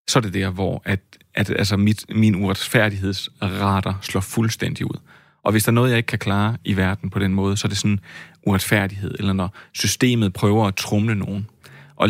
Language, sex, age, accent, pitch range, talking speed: Danish, male, 30-49, native, 100-115 Hz, 205 wpm